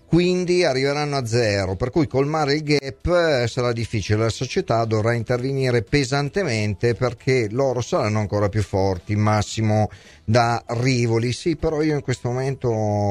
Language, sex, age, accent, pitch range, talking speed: Italian, male, 40-59, native, 105-140 Hz, 140 wpm